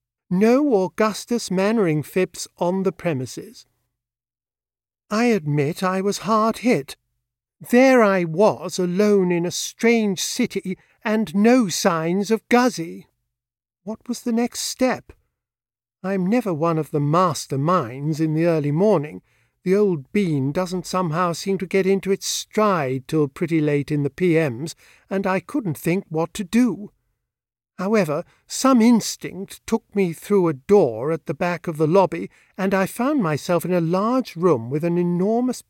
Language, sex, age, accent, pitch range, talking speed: English, male, 50-69, British, 150-210 Hz, 155 wpm